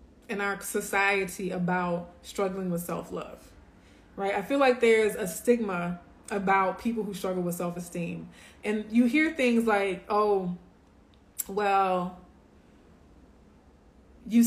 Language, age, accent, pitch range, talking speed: English, 20-39, American, 180-225 Hz, 115 wpm